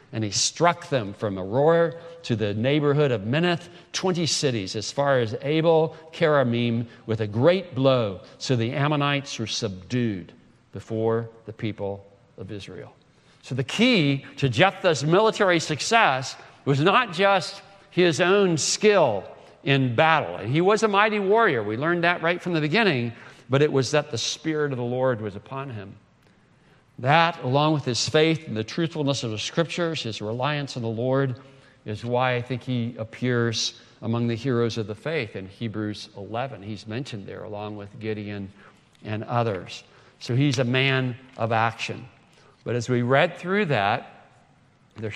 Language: English